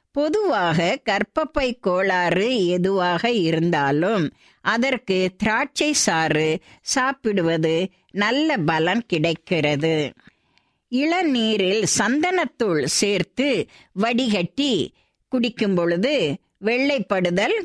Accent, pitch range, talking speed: native, 175-270 Hz, 65 wpm